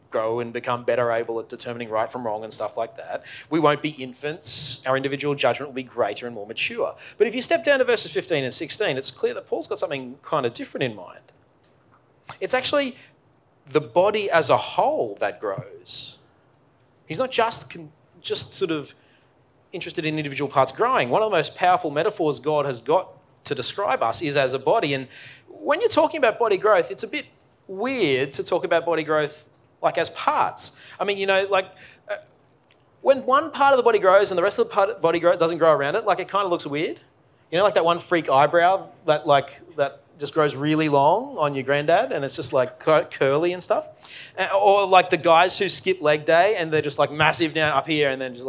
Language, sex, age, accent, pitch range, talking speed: English, male, 30-49, Australian, 135-180 Hz, 220 wpm